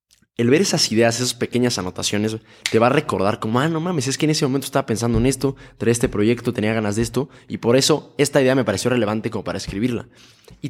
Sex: male